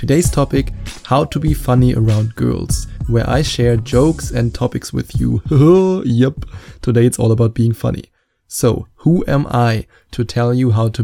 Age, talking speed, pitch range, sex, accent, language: 20-39, 175 wpm, 115-130 Hz, male, German, English